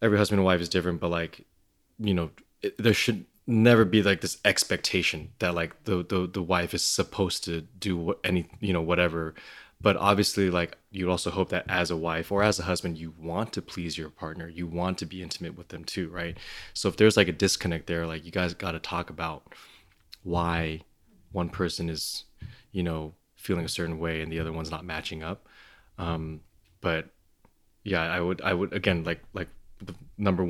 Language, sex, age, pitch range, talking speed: English, male, 20-39, 85-95 Hz, 205 wpm